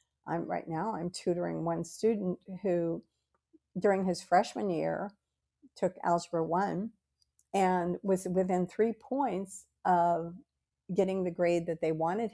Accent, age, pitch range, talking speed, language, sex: American, 50-69, 170-225 Hz, 130 wpm, English, female